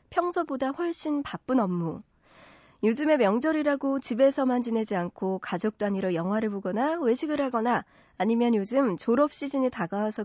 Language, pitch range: Korean, 200-275 Hz